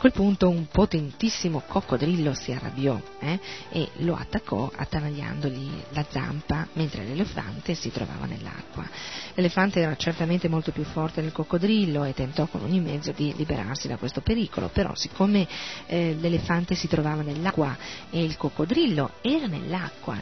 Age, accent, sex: 40-59, native, female